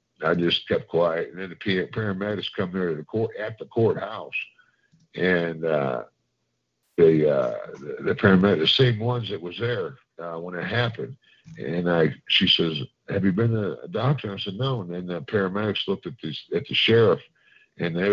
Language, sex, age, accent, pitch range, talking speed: English, male, 50-69, American, 90-115 Hz, 190 wpm